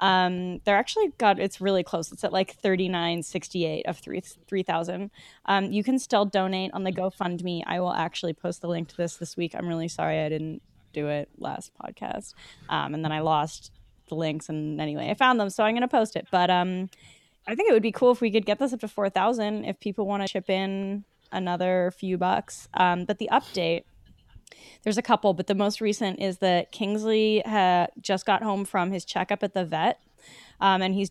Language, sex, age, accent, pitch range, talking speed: English, female, 10-29, American, 175-205 Hz, 215 wpm